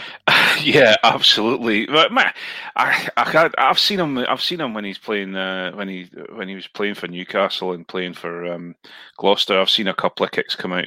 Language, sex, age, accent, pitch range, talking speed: English, male, 30-49, British, 95-145 Hz, 205 wpm